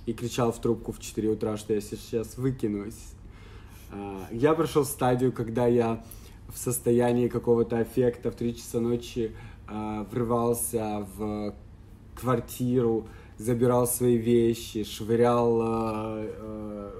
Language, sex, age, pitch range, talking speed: Ukrainian, male, 20-39, 105-125 Hz, 115 wpm